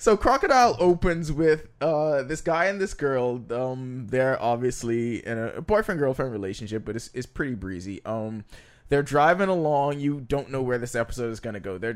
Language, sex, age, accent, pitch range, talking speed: English, male, 20-39, American, 110-145 Hz, 185 wpm